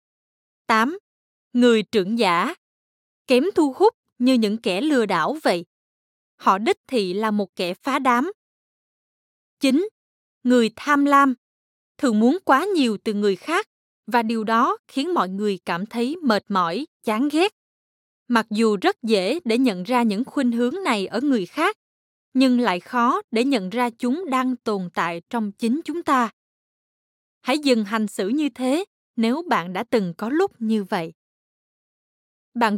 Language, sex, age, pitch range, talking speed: Vietnamese, female, 20-39, 220-280 Hz, 160 wpm